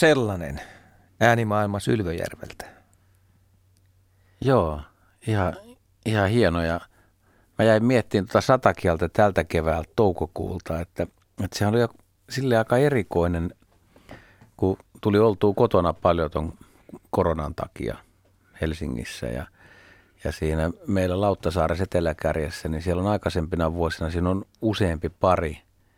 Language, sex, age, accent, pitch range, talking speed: Finnish, male, 60-79, native, 85-100 Hz, 105 wpm